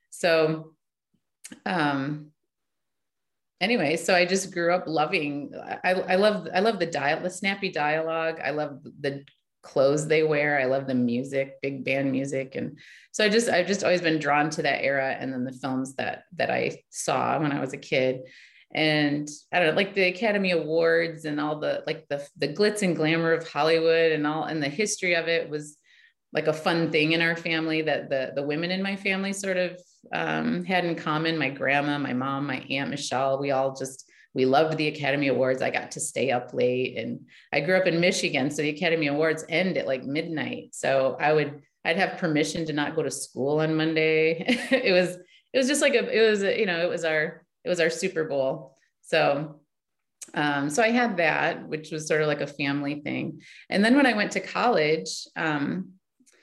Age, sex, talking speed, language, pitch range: 30-49, female, 205 wpm, English, 145-180 Hz